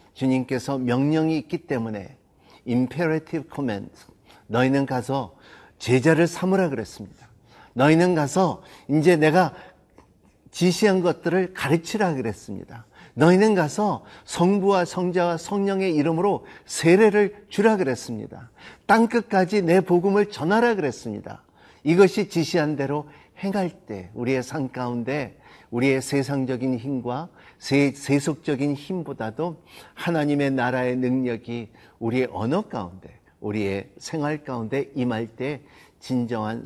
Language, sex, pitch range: Korean, male, 110-160 Hz